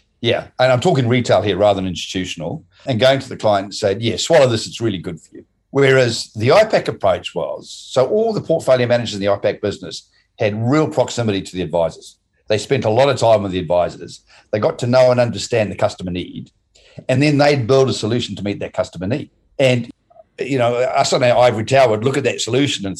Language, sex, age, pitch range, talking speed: English, male, 50-69, 100-135 Hz, 225 wpm